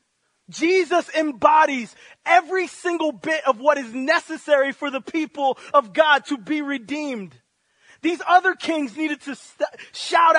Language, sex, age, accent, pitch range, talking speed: English, male, 30-49, American, 190-285 Hz, 135 wpm